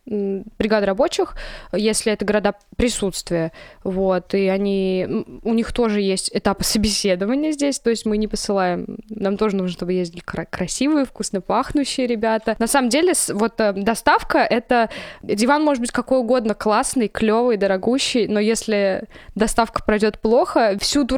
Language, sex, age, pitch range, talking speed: Russian, female, 20-39, 200-235 Hz, 145 wpm